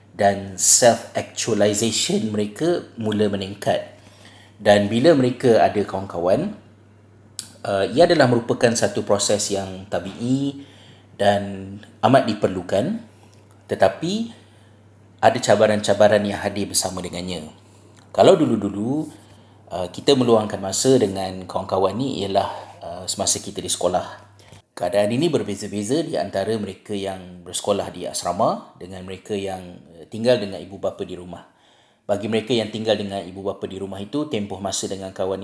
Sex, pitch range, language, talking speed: male, 95-110 Hz, Malay, 125 wpm